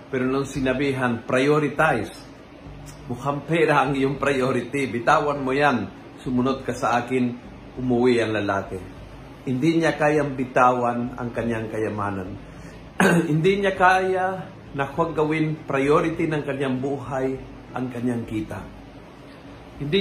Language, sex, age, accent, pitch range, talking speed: Filipino, male, 50-69, native, 125-160 Hz, 115 wpm